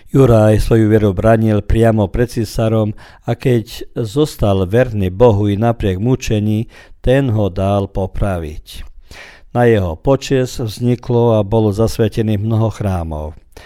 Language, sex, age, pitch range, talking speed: Croatian, male, 50-69, 100-120 Hz, 125 wpm